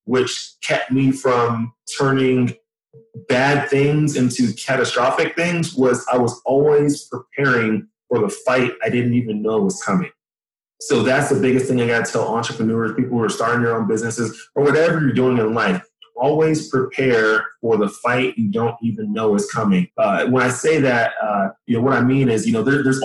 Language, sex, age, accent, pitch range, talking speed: English, male, 30-49, American, 120-145 Hz, 190 wpm